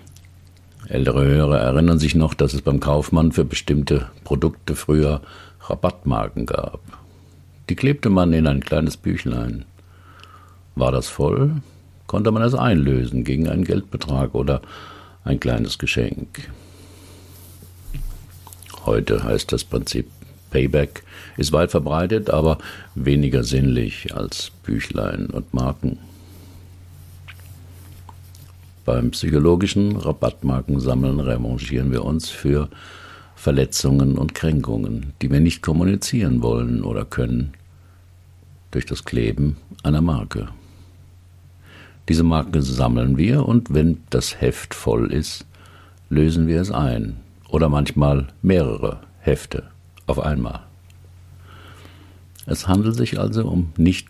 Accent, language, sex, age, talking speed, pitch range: German, German, male, 50-69, 110 wpm, 75-90 Hz